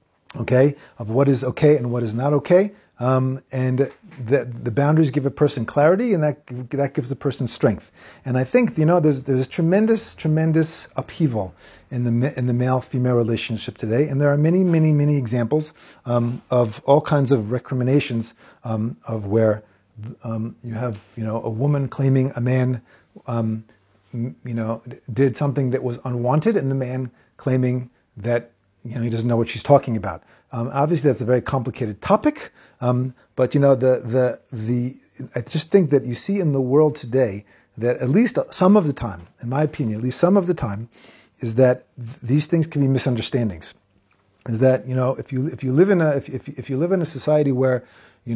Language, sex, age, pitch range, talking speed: English, male, 40-59, 120-145 Hz, 200 wpm